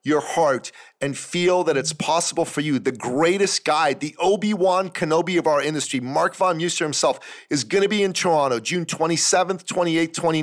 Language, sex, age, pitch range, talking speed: English, male, 40-59, 155-190 Hz, 175 wpm